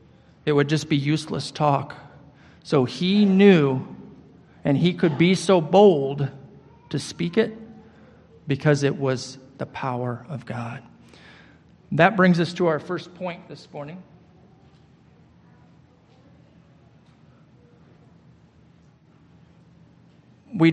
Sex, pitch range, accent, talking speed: male, 140-170 Hz, American, 100 wpm